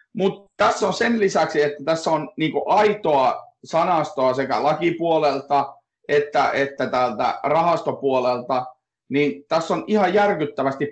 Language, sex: Finnish, male